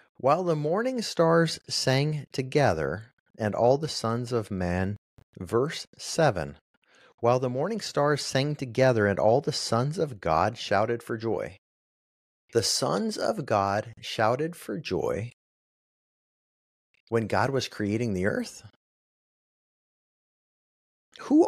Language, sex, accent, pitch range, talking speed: English, male, American, 100-135 Hz, 120 wpm